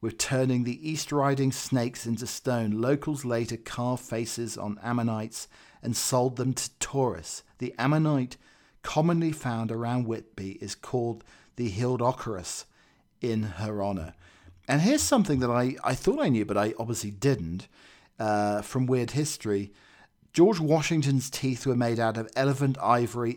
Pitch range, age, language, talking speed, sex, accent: 105-130 Hz, 40-59, English, 150 wpm, male, British